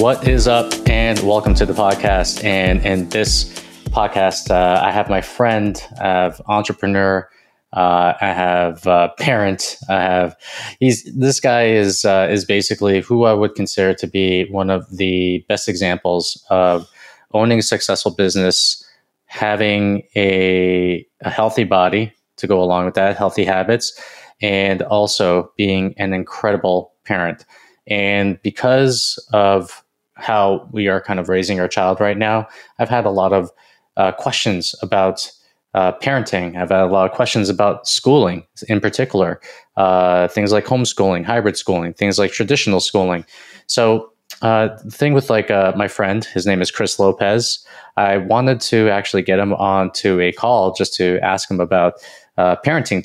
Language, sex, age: English, male, 20-39